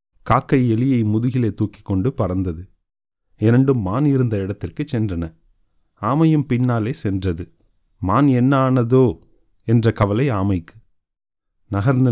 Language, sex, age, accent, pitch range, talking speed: Tamil, male, 30-49, native, 95-125 Hz, 105 wpm